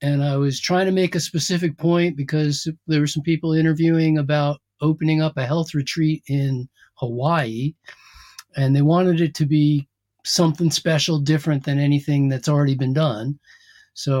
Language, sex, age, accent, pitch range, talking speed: English, male, 50-69, American, 140-170 Hz, 165 wpm